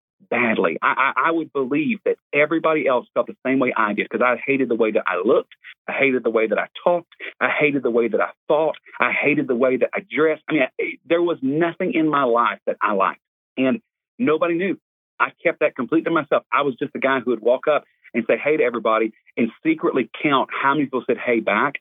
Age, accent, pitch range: 40-59, American, 120-155 Hz